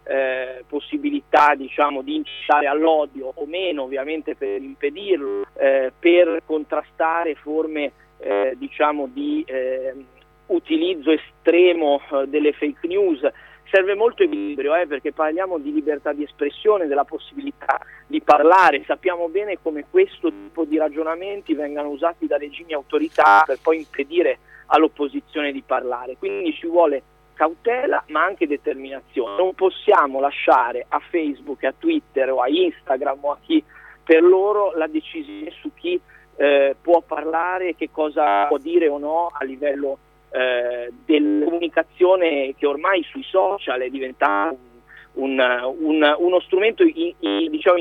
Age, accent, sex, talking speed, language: 40-59, native, male, 140 wpm, Italian